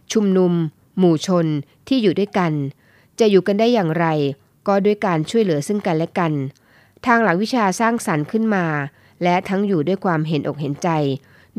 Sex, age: female, 20-39